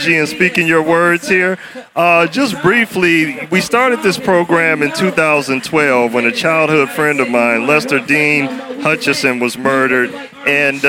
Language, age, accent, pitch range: English, 40-59, American, 135-170 Hz